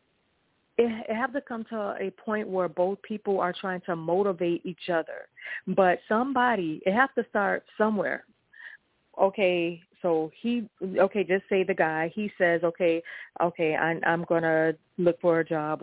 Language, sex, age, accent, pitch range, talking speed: English, female, 30-49, American, 175-225 Hz, 165 wpm